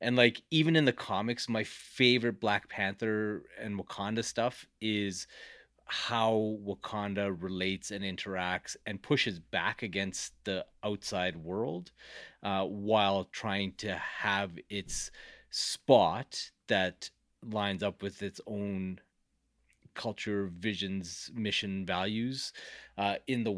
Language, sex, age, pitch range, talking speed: English, male, 30-49, 95-115 Hz, 115 wpm